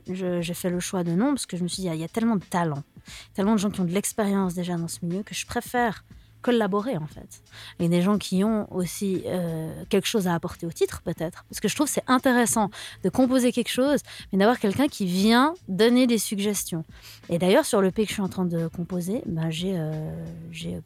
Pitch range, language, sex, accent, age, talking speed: 170-210 Hz, French, female, French, 20-39, 245 wpm